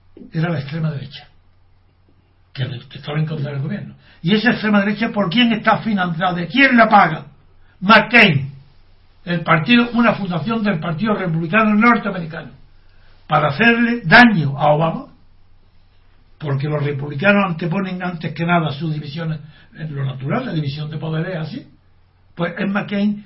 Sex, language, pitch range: male, Spanish, 135-215 Hz